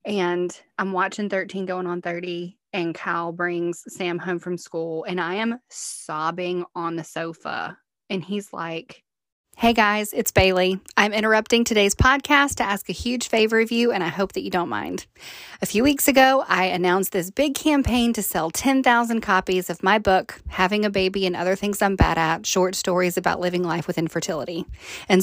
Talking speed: 190 wpm